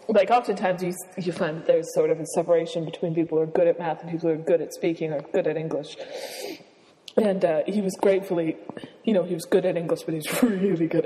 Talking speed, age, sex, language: 245 wpm, 20-39, female, English